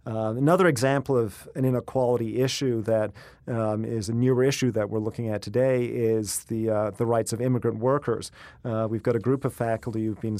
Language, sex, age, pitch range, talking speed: English, male, 40-59, 110-125 Hz, 200 wpm